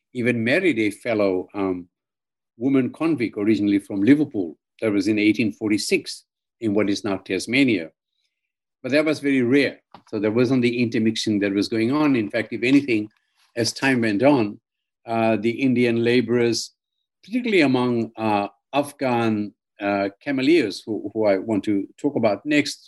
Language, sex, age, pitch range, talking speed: English, male, 50-69, 105-140 Hz, 155 wpm